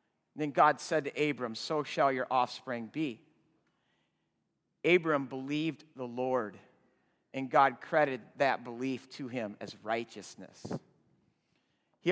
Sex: male